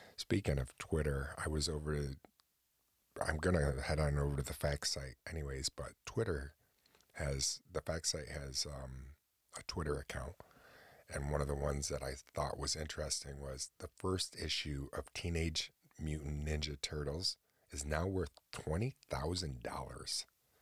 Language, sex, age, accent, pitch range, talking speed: English, male, 40-59, American, 70-80 Hz, 155 wpm